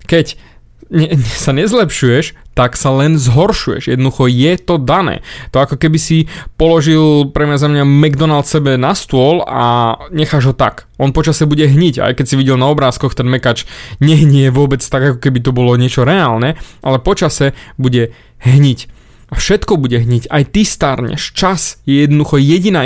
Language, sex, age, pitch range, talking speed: Slovak, male, 20-39, 130-160 Hz, 170 wpm